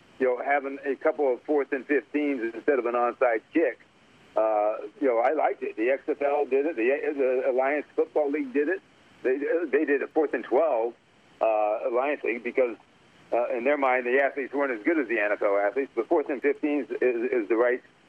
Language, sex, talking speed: English, male, 205 wpm